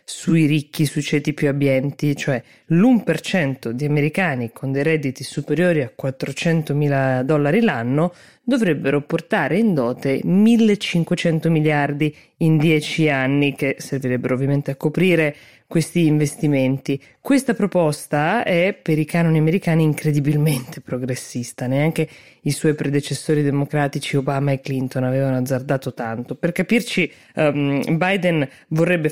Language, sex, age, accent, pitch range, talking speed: Italian, female, 20-39, native, 140-170 Hz, 120 wpm